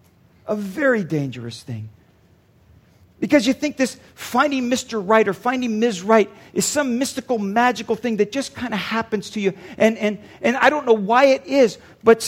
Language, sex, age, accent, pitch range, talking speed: English, male, 50-69, American, 170-270 Hz, 180 wpm